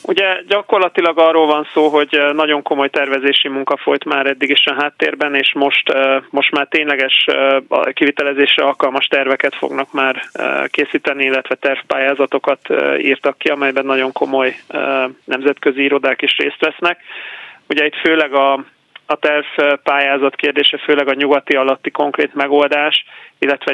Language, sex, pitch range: Hungarian, male, 130-145 Hz